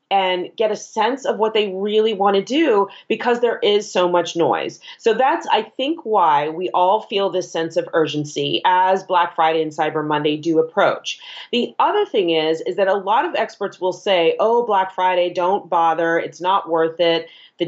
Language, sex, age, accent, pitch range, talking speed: English, female, 30-49, American, 165-205 Hz, 200 wpm